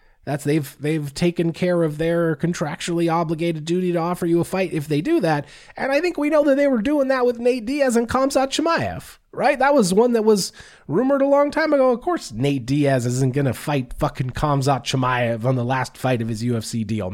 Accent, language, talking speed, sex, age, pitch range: American, English, 230 wpm, male, 30-49, 135-180 Hz